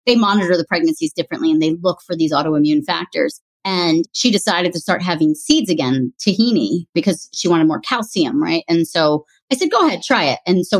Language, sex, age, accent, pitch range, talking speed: English, female, 30-49, American, 175-225 Hz, 205 wpm